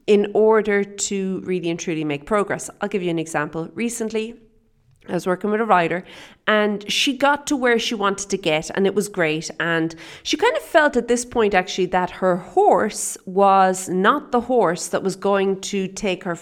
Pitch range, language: 170-230 Hz, English